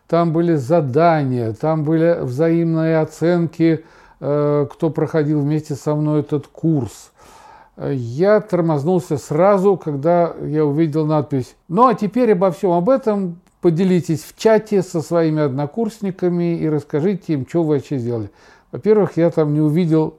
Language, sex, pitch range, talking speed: Russian, male, 145-185 Hz, 135 wpm